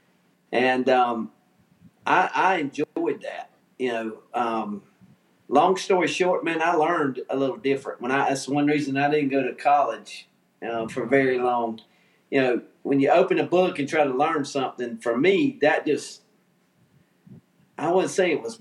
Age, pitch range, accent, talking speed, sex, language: 40-59, 120-155 Hz, American, 175 wpm, male, English